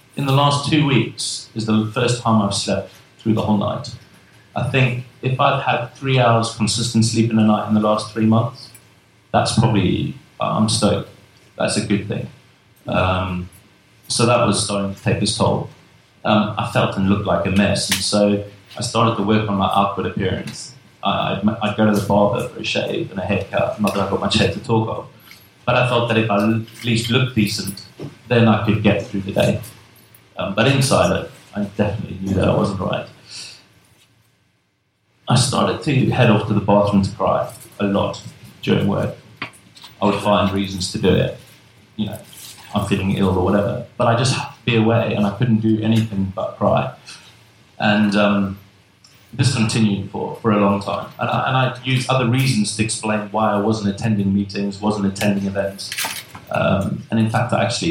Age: 30-49